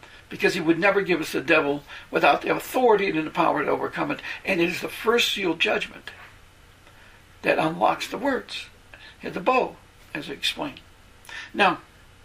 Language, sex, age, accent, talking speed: English, male, 60-79, American, 170 wpm